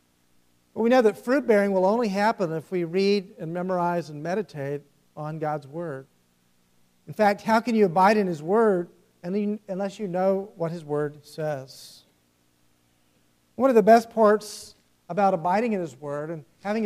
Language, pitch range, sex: English, 135-205 Hz, male